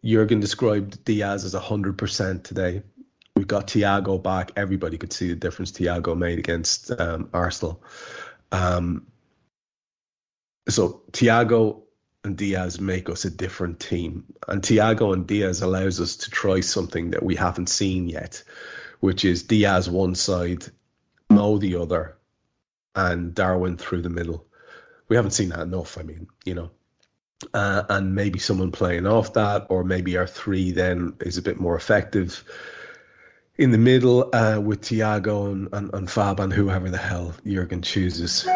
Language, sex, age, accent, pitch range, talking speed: English, male, 30-49, Irish, 90-105 Hz, 155 wpm